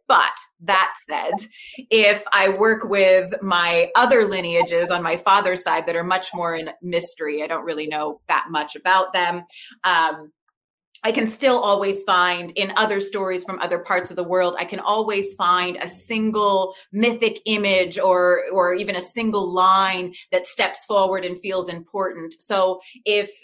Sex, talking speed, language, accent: female, 165 wpm, English, American